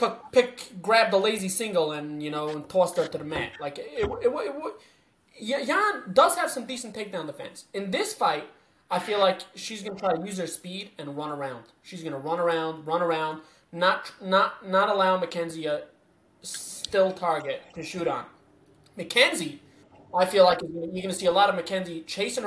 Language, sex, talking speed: English, male, 200 wpm